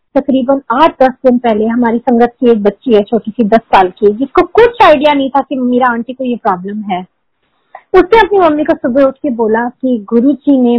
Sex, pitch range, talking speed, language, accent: female, 225-285 Hz, 230 wpm, Hindi, native